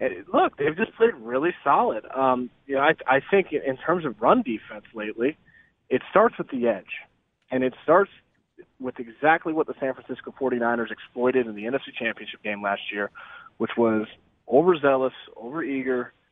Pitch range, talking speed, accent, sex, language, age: 115-150 Hz, 165 wpm, American, male, English, 30-49